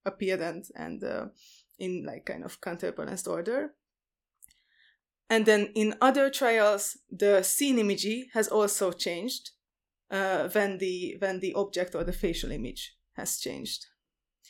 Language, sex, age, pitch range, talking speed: English, female, 20-39, 190-230 Hz, 130 wpm